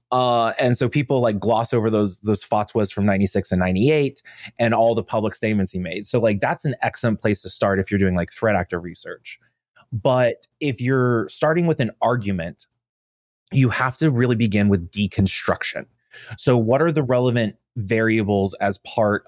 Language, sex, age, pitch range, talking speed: English, male, 20-39, 100-120 Hz, 180 wpm